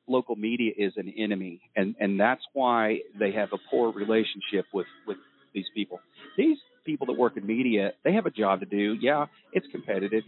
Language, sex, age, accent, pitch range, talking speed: English, male, 40-59, American, 100-120 Hz, 195 wpm